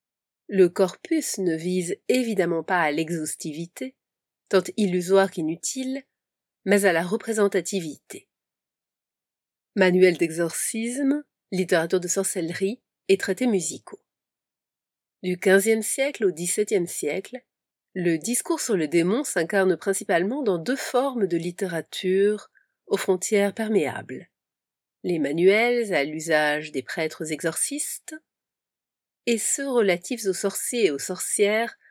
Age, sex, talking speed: 30-49, female, 110 wpm